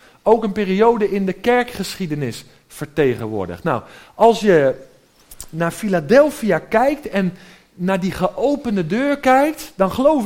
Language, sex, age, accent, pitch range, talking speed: Dutch, male, 50-69, Dutch, 200-280 Hz, 125 wpm